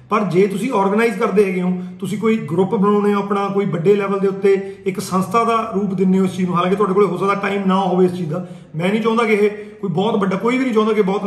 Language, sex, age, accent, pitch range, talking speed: Hindi, male, 40-59, native, 185-220 Hz, 245 wpm